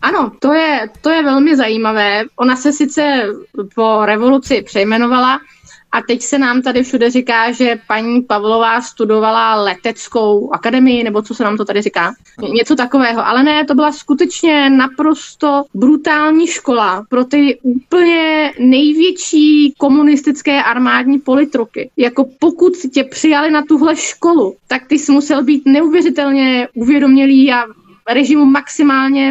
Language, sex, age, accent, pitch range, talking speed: Czech, female, 20-39, native, 235-285 Hz, 135 wpm